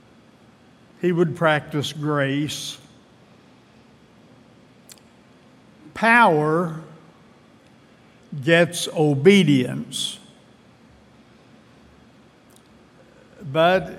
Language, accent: English, American